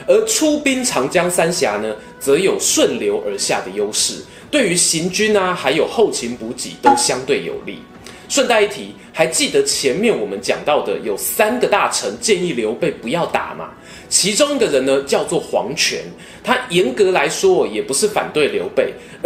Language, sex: Chinese, male